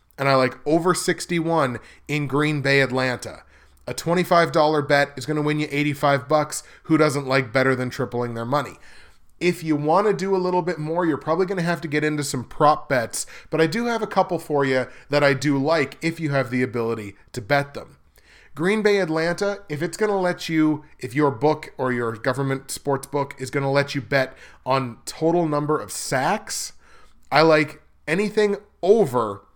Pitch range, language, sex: 130-160 Hz, English, male